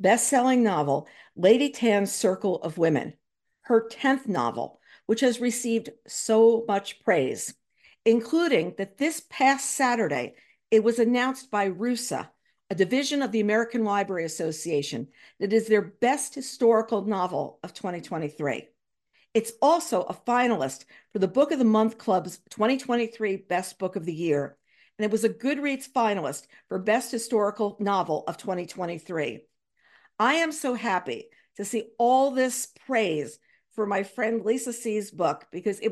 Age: 50-69